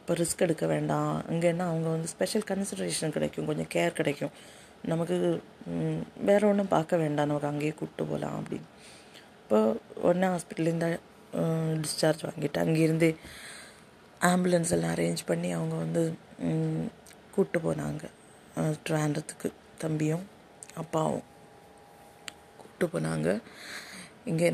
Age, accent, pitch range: 30-49, native, 155-190 Hz